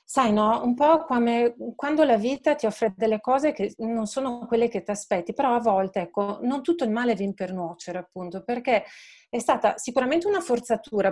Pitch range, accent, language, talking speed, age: 195-250 Hz, native, Italian, 200 wpm, 30-49